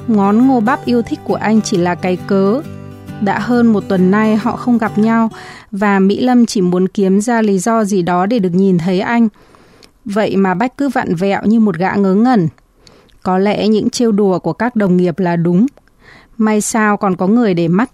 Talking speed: 215 wpm